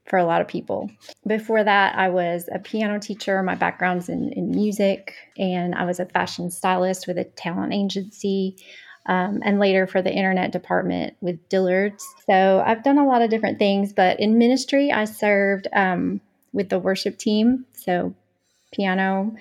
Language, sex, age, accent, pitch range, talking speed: English, female, 30-49, American, 180-205 Hz, 175 wpm